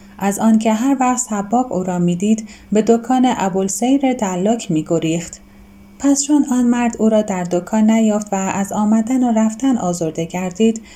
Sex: female